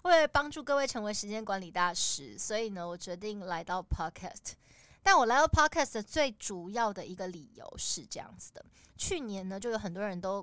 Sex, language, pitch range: female, Chinese, 175-220 Hz